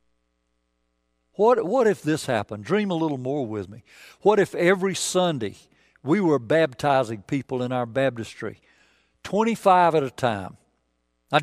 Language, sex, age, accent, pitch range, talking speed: English, male, 60-79, American, 105-160 Hz, 140 wpm